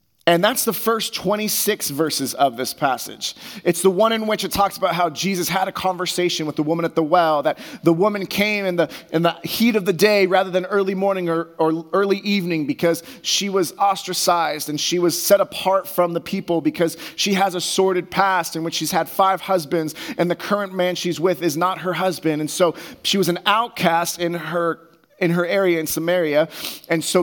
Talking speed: 215 wpm